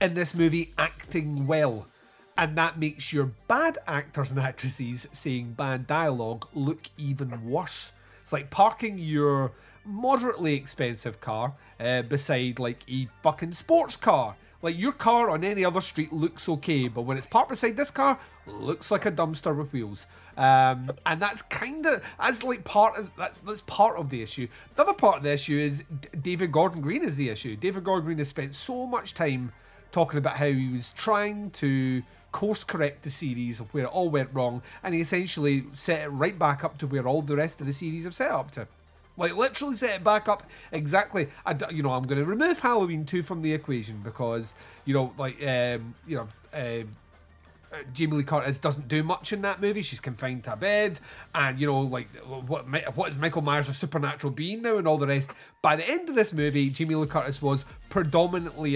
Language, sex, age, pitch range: English, male, 30-49, 130-180 Hz